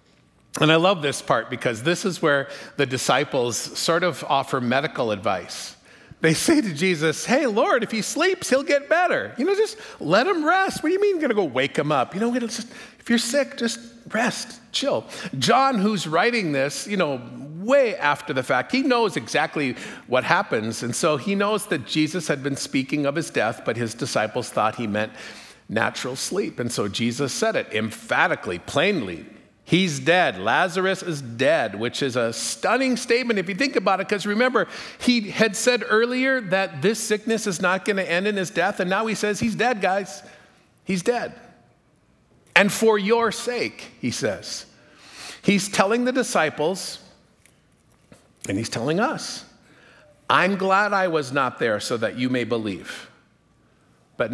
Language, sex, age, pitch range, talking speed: English, male, 50-69, 150-235 Hz, 175 wpm